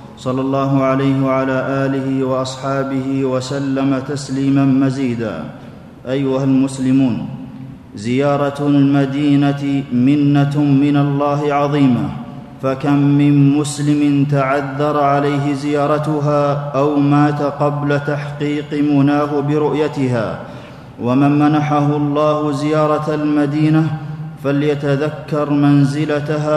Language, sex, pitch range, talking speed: Arabic, male, 140-150 Hz, 80 wpm